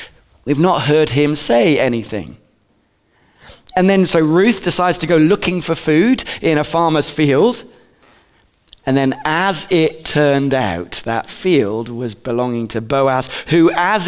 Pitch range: 115-175 Hz